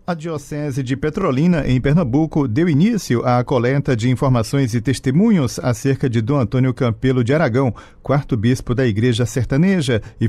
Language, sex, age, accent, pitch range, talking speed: Portuguese, male, 40-59, Brazilian, 120-150 Hz, 155 wpm